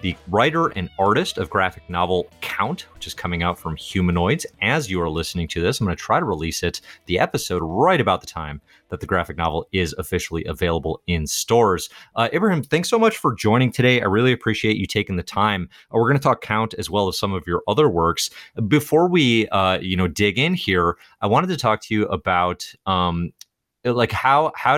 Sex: male